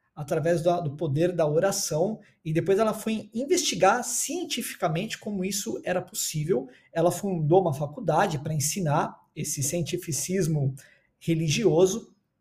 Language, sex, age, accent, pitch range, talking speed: Portuguese, male, 20-39, Brazilian, 145-215 Hz, 120 wpm